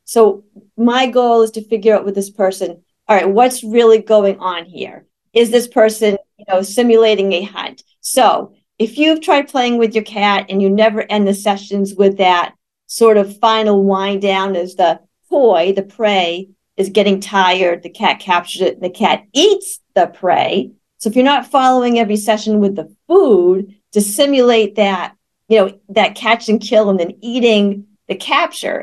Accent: American